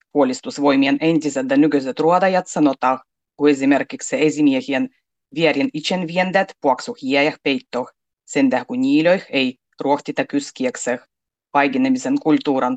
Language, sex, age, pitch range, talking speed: Finnish, female, 30-49, 140-200 Hz, 100 wpm